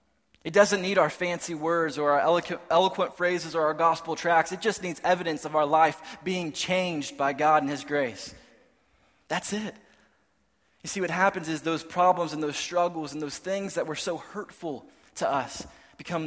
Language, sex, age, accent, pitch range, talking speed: English, male, 20-39, American, 135-170 Hz, 190 wpm